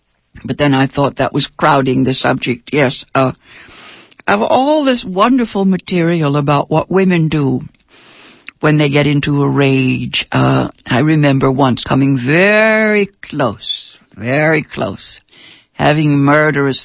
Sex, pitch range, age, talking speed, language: female, 135-195 Hz, 60-79, 130 wpm, English